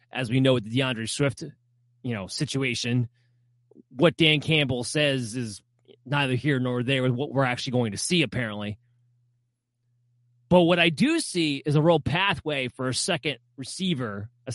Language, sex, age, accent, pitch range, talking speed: English, male, 30-49, American, 120-150 Hz, 170 wpm